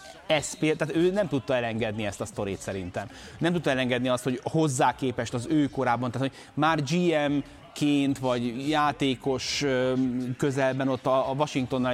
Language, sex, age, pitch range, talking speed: Hungarian, male, 30-49, 115-140 Hz, 150 wpm